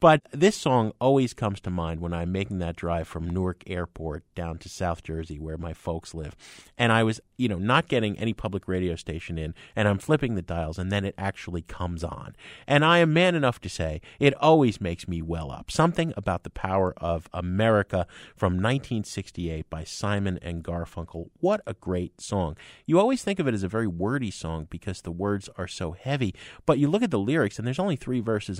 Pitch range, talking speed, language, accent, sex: 85-115 Hz, 215 wpm, English, American, male